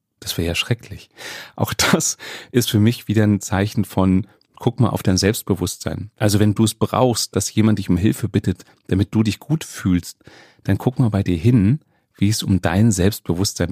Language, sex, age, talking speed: German, male, 30-49, 195 wpm